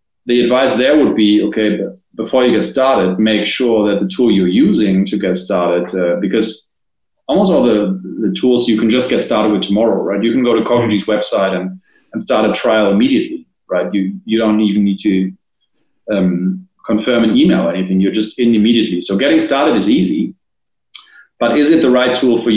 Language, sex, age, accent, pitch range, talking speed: English, male, 30-49, German, 100-120 Hz, 200 wpm